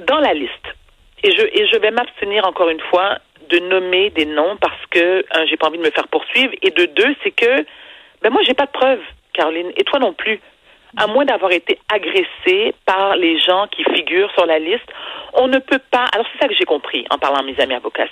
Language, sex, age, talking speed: French, female, 40-59, 235 wpm